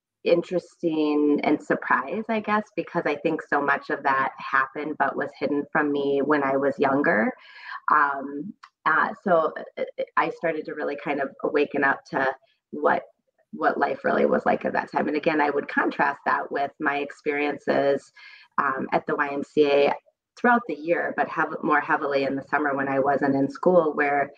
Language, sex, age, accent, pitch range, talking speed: English, female, 30-49, American, 140-170 Hz, 175 wpm